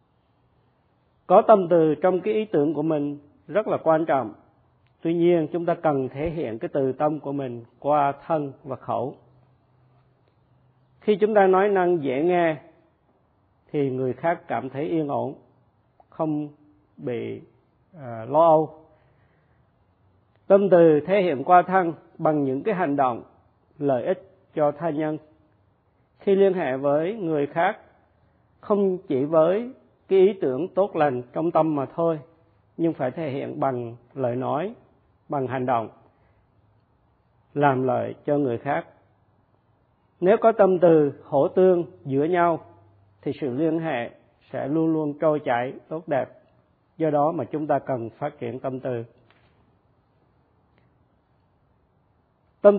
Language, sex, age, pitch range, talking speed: Vietnamese, male, 50-69, 125-165 Hz, 145 wpm